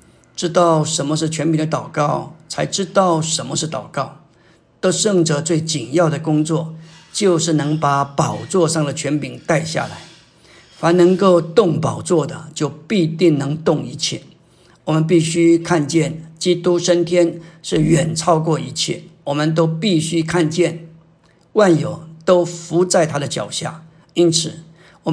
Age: 50-69